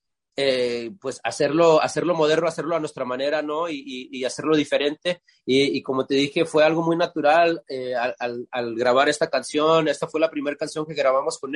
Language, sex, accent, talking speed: English, male, Mexican, 200 wpm